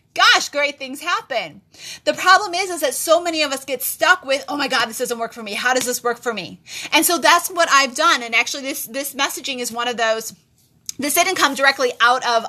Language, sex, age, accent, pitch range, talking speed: English, female, 30-49, American, 230-275 Hz, 245 wpm